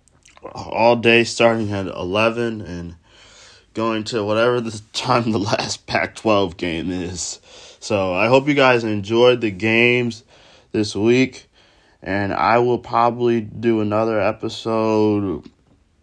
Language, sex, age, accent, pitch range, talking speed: English, male, 20-39, American, 100-120 Hz, 125 wpm